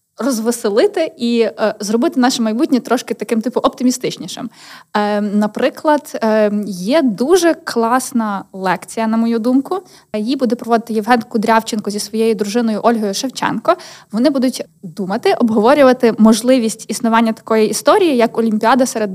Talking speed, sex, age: 130 wpm, female, 20-39